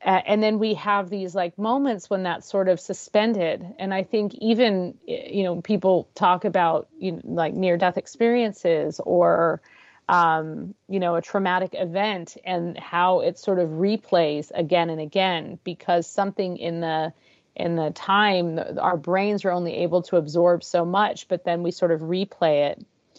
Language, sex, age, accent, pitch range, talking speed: English, female, 40-59, American, 175-215 Hz, 170 wpm